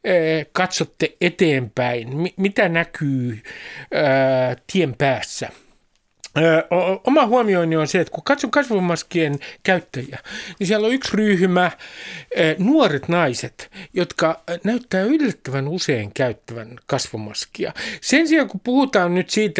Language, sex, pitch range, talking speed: Finnish, male, 135-195 Hz, 105 wpm